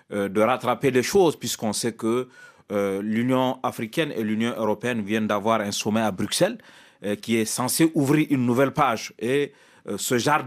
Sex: male